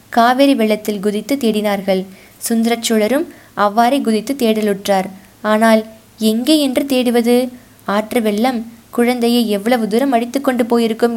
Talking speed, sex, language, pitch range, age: 105 wpm, female, Tamil, 210-250 Hz, 20-39